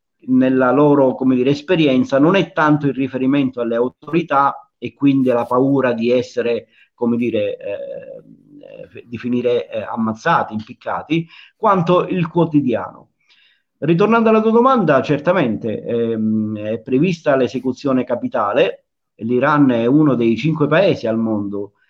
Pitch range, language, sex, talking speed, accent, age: 115-155 Hz, Italian, male, 125 wpm, native, 50-69